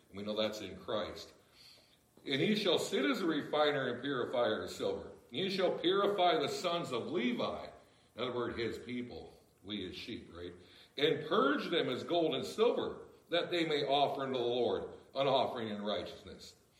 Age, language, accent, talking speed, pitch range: 60-79, English, American, 180 wpm, 110-165 Hz